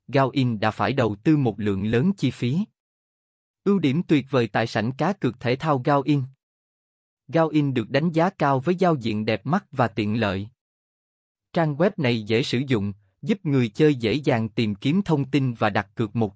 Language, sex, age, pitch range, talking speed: Vietnamese, male, 20-39, 110-150 Hz, 195 wpm